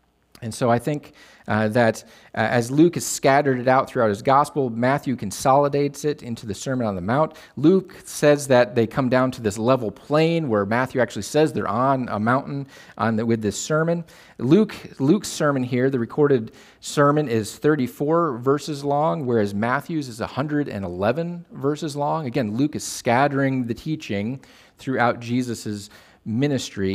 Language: English